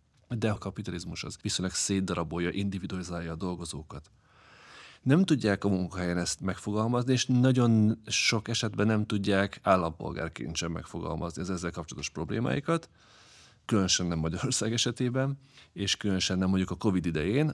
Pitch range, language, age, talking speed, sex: 90-110 Hz, Hungarian, 30-49, 135 wpm, male